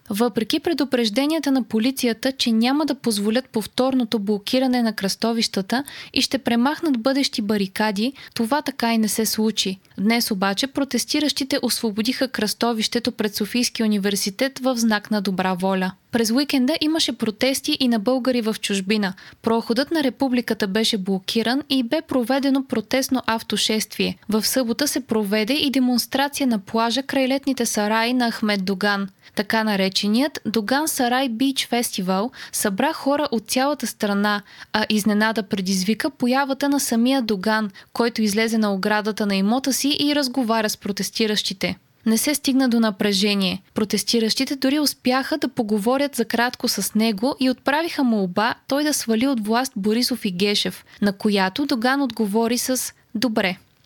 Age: 20-39